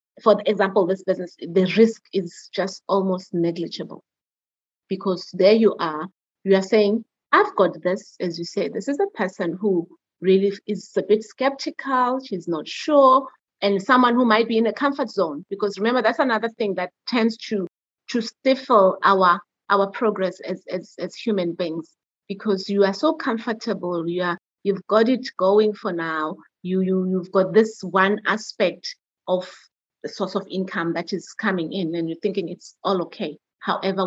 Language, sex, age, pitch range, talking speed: English, female, 30-49, 185-225 Hz, 175 wpm